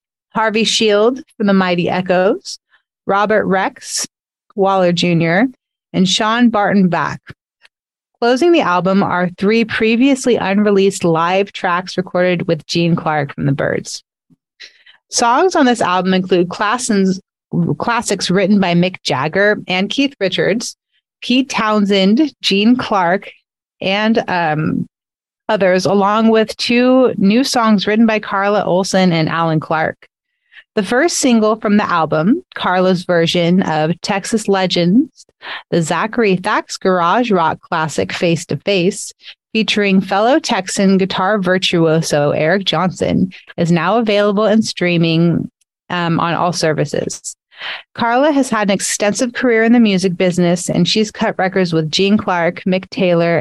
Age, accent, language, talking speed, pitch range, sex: 30-49, American, English, 130 wpm, 175-220 Hz, female